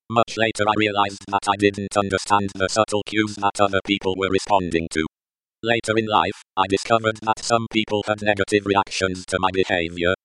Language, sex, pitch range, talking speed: English, male, 95-110 Hz, 180 wpm